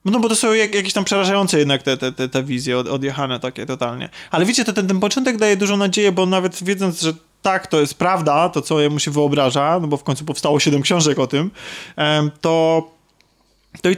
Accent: native